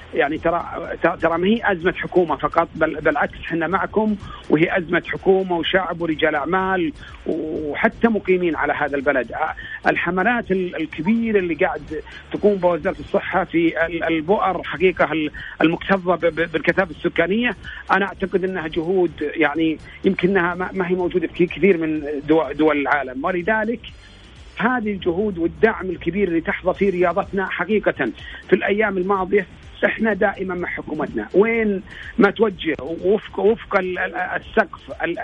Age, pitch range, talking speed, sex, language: 40-59, 165-205 Hz, 125 wpm, male, Arabic